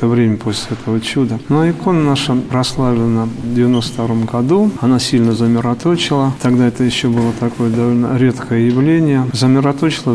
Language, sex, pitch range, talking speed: Russian, male, 120-135 Hz, 150 wpm